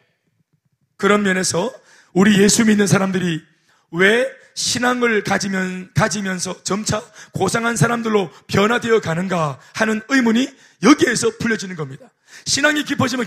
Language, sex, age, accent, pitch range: Korean, male, 30-49, native, 190-260 Hz